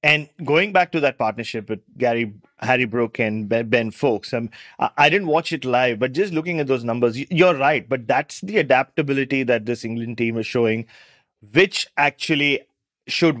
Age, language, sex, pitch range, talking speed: 30-49, English, male, 120-150 Hz, 180 wpm